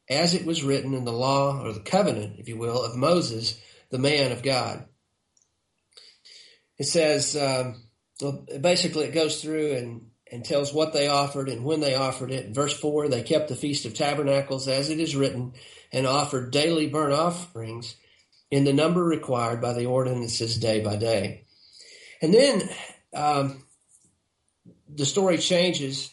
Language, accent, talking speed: English, American, 165 wpm